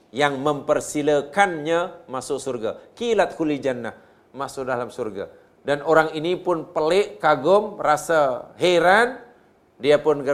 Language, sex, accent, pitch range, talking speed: Malayalam, male, Indonesian, 120-150 Hz, 115 wpm